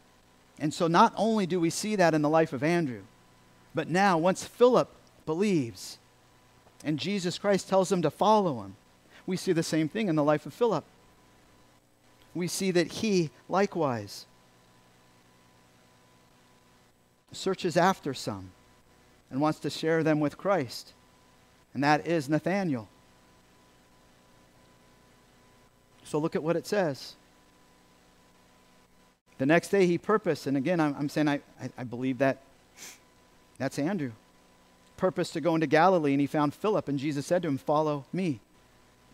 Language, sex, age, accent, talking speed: English, male, 50-69, American, 145 wpm